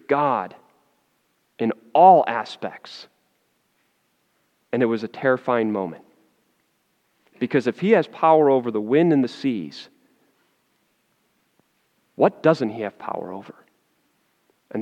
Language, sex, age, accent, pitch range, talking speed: English, male, 40-59, American, 150-245 Hz, 115 wpm